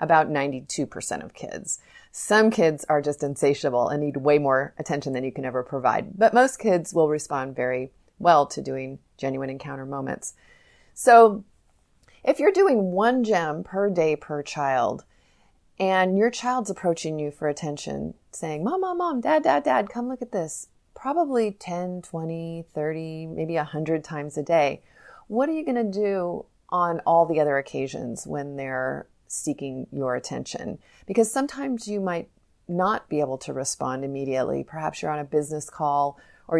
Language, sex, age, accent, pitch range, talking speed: English, female, 30-49, American, 145-190 Hz, 165 wpm